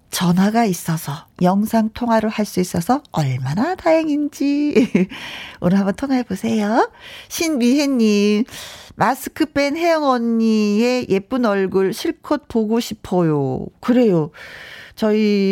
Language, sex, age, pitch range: Korean, female, 40-59, 195-285 Hz